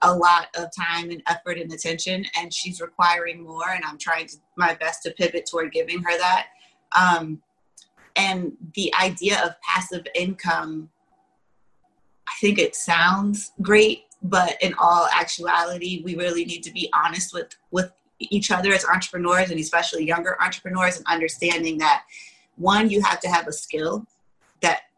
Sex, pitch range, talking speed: female, 165-190 Hz, 160 wpm